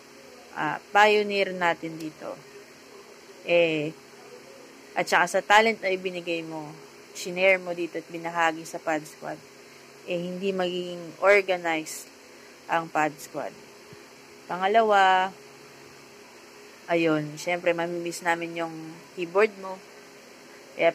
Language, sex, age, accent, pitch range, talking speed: English, female, 20-39, Filipino, 170-200 Hz, 105 wpm